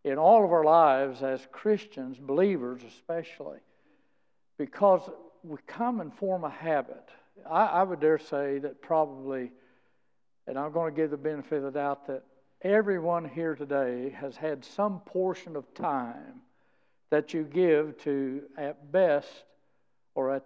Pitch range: 140-170 Hz